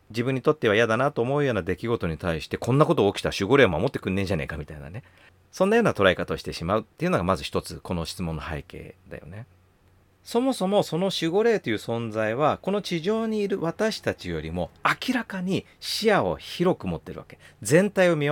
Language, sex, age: Japanese, male, 40-59